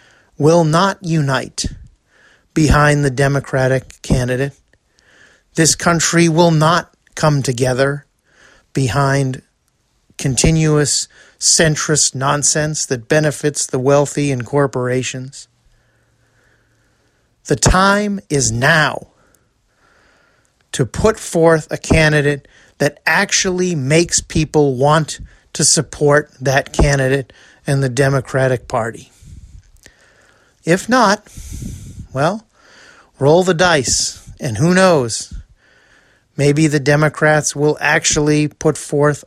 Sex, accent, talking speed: male, American, 95 wpm